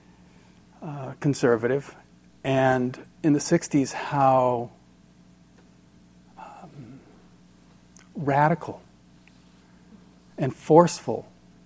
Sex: male